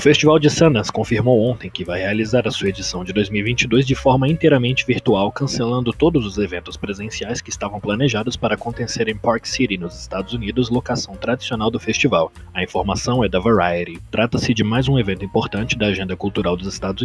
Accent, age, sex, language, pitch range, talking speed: Brazilian, 20-39, male, Portuguese, 100-125 Hz, 190 wpm